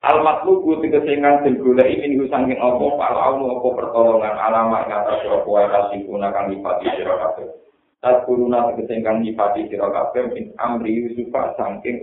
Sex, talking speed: male, 120 wpm